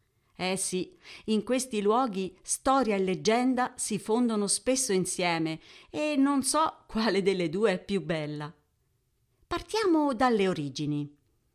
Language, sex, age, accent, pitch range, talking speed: Italian, female, 50-69, native, 170-255 Hz, 125 wpm